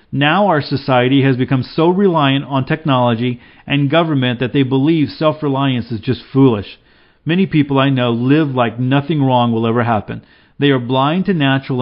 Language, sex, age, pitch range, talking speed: English, male, 40-59, 125-150 Hz, 175 wpm